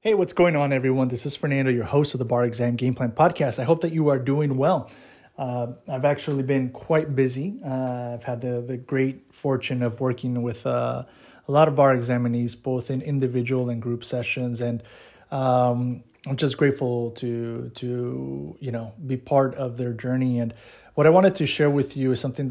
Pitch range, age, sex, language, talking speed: 120-135 Hz, 30-49, male, English, 205 wpm